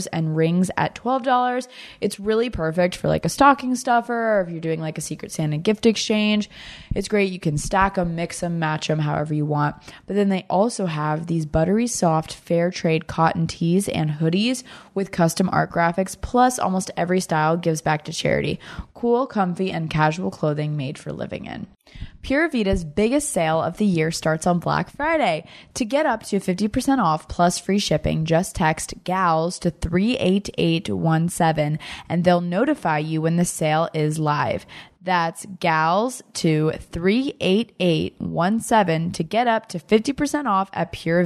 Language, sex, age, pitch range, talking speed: English, female, 20-39, 160-210 Hz, 170 wpm